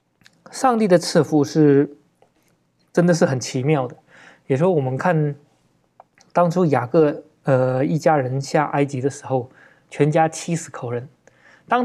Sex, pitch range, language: male, 135-185 Hz, Chinese